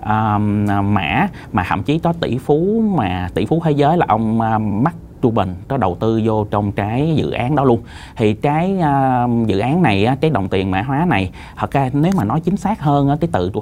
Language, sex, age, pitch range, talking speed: Vietnamese, male, 20-39, 105-150 Hz, 225 wpm